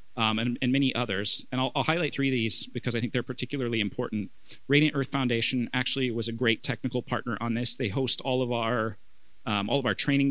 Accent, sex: American, male